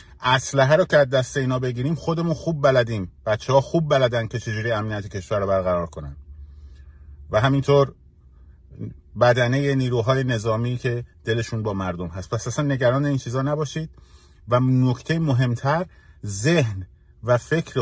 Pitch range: 100-135 Hz